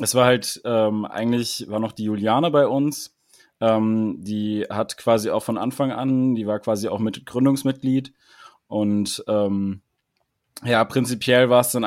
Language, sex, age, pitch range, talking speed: German, male, 20-39, 120-135 Hz, 160 wpm